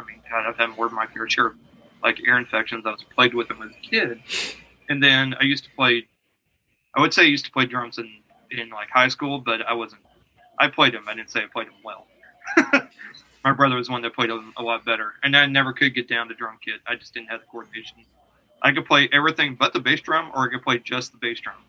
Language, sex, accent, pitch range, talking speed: English, male, American, 115-135 Hz, 255 wpm